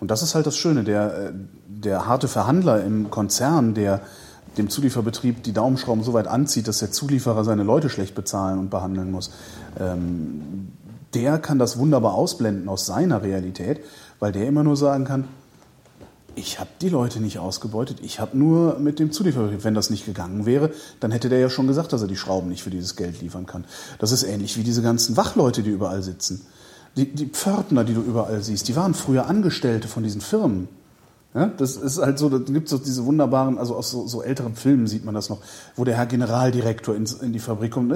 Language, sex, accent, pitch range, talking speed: German, male, German, 105-145 Hz, 205 wpm